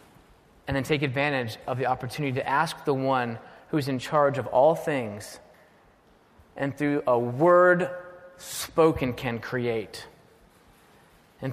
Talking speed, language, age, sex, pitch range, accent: 130 wpm, English, 30-49, male, 125-155 Hz, American